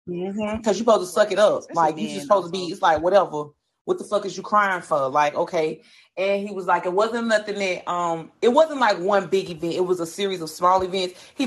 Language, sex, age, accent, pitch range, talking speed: English, female, 30-49, American, 185-230 Hz, 255 wpm